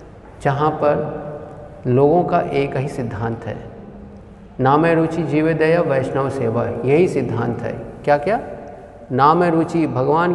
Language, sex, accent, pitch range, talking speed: Hindi, male, native, 120-155 Hz, 120 wpm